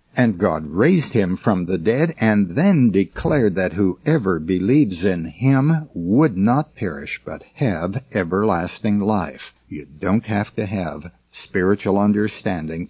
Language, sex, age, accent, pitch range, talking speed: English, male, 60-79, American, 90-120 Hz, 135 wpm